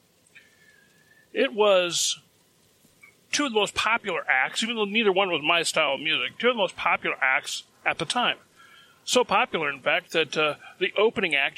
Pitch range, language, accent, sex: 155-200 Hz, English, American, male